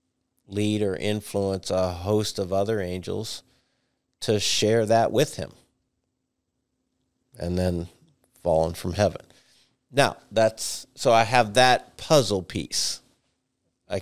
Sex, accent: male, American